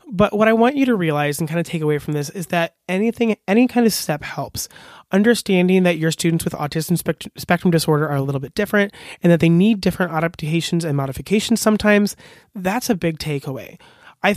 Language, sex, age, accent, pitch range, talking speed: English, male, 30-49, American, 155-205 Hz, 205 wpm